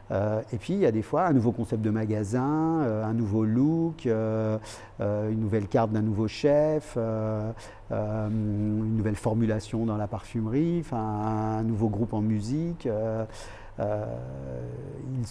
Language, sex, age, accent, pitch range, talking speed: French, male, 50-69, French, 110-130 Hz, 135 wpm